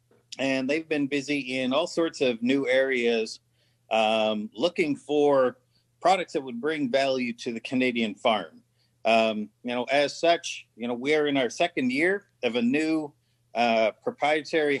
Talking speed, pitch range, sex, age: 160 wpm, 120-155 Hz, male, 40-59